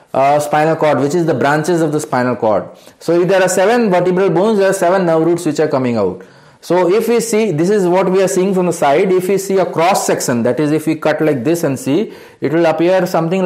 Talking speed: 265 wpm